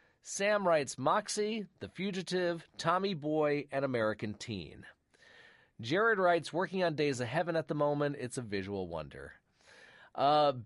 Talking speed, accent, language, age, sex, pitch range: 140 wpm, American, English, 40-59, male, 115-165 Hz